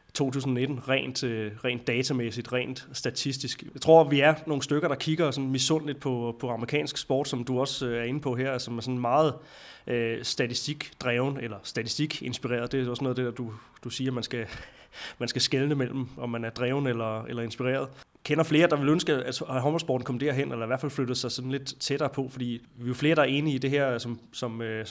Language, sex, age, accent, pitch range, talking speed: Danish, male, 20-39, native, 120-140 Hz, 220 wpm